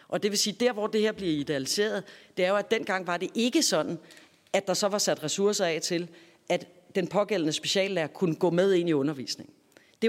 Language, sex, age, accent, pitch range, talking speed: Danish, female, 40-59, native, 170-210 Hz, 225 wpm